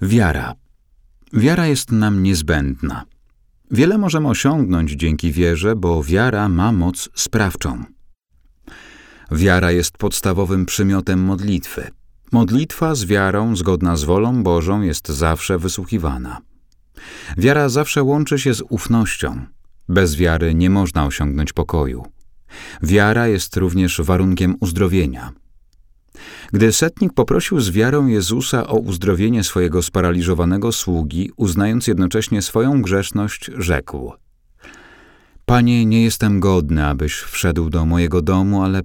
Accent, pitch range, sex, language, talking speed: native, 85-115 Hz, male, Polish, 115 wpm